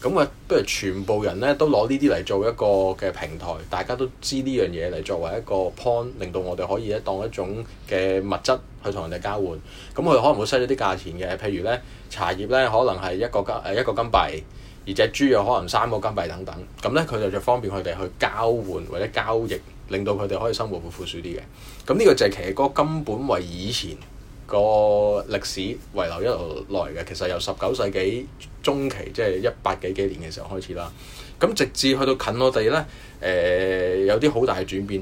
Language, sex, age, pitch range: Chinese, male, 20-39, 95-120 Hz